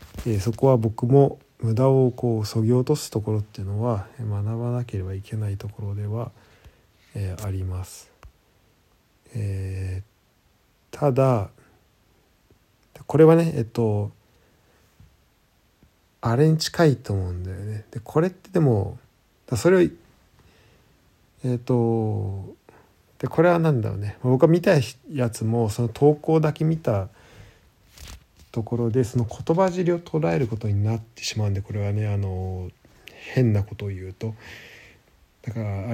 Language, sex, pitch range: Japanese, male, 105-135 Hz